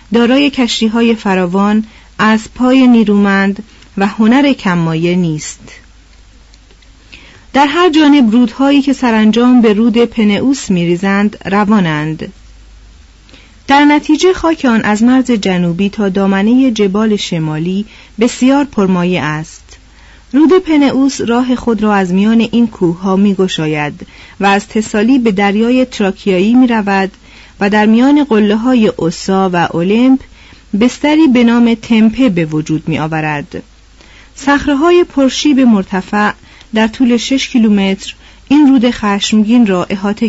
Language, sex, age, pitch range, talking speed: Persian, female, 40-59, 185-250 Hz, 120 wpm